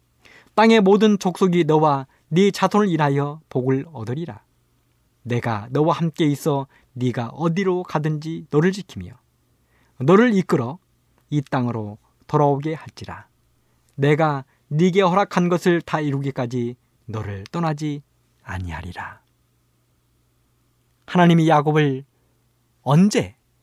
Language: Korean